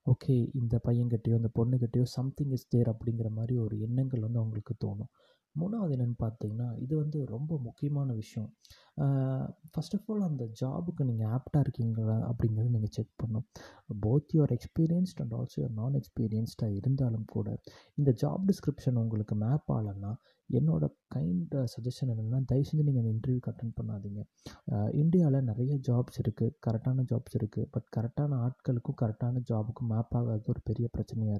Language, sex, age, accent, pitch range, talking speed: Tamil, male, 30-49, native, 115-135 Hz, 145 wpm